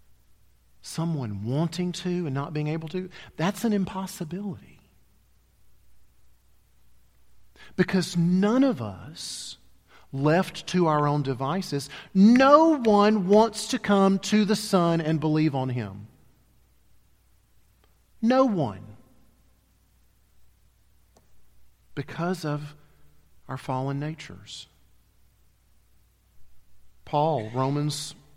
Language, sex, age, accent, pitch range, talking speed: English, male, 40-59, American, 120-180 Hz, 85 wpm